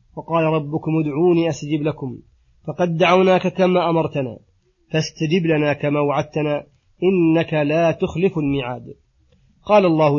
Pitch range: 140-170 Hz